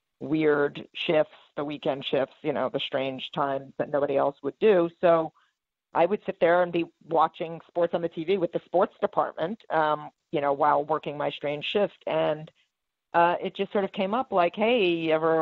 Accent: American